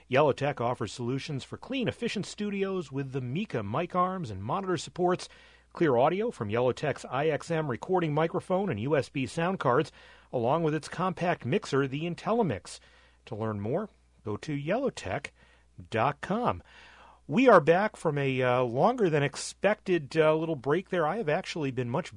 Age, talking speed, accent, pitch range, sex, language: 40-59, 150 wpm, American, 130-175 Hz, male, English